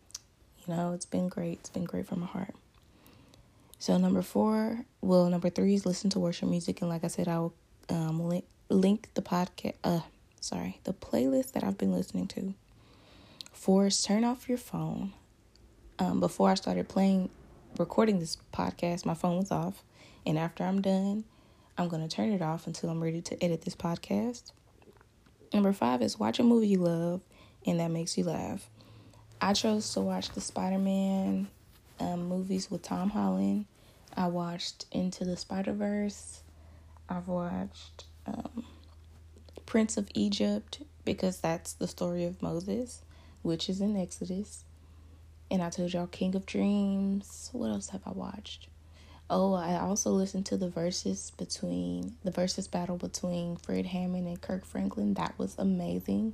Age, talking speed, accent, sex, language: 20-39, 160 wpm, American, female, English